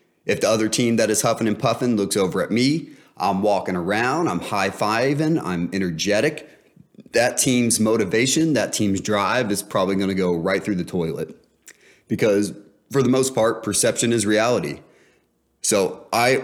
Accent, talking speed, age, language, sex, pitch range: American, 165 wpm, 30-49, English, male, 95-110 Hz